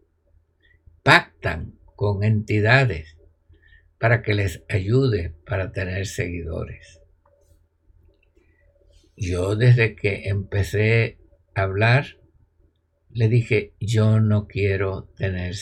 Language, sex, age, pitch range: Spanish, male, 60-79, 80-110 Hz